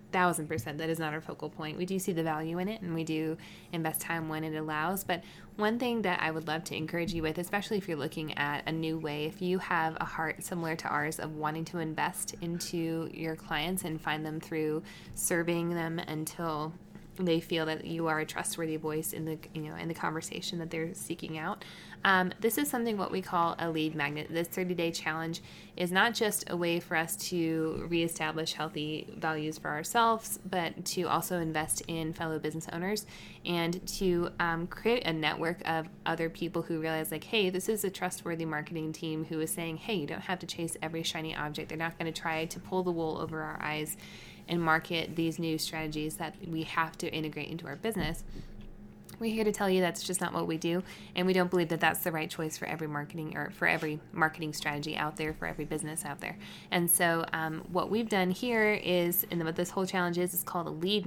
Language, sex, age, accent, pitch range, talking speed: English, female, 20-39, American, 160-180 Hz, 225 wpm